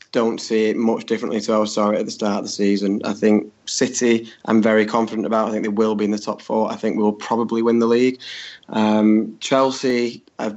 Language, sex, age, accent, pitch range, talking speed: English, male, 20-39, British, 105-115 Hz, 225 wpm